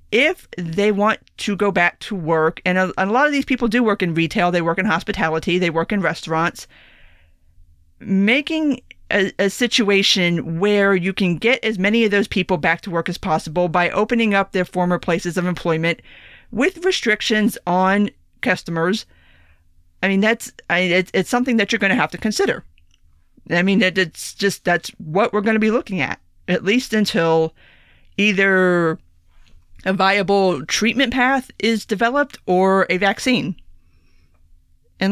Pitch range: 165-210 Hz